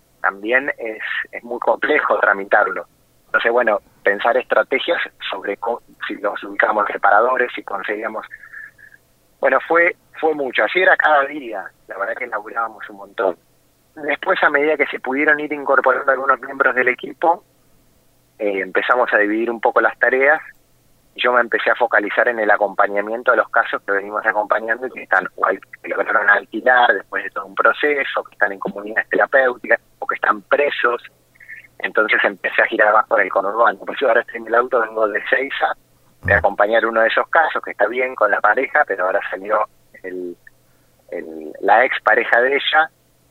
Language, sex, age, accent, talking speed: Spanish, male, 20-39, Argentinian, 180 wpm